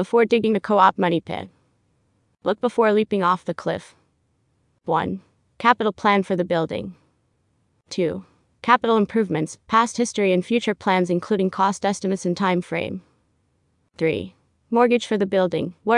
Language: English